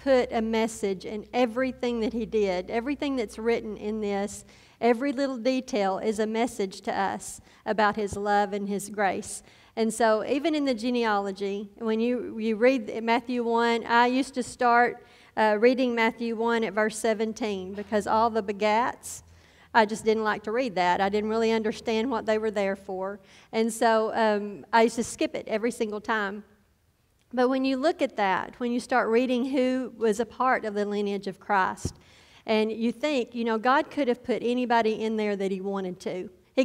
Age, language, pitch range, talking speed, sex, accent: 50-69, English, 210-245 Hz, 190 wpm, female, American